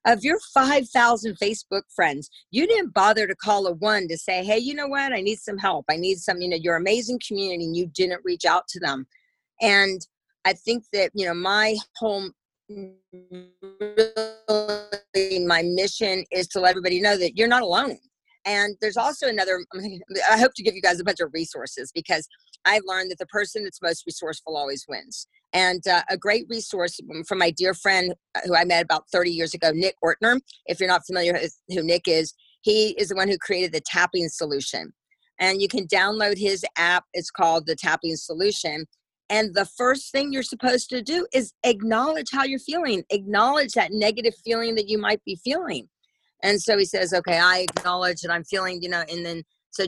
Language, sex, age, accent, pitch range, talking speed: English, female, 40-59, American, 175-220 Hz, 200 wpm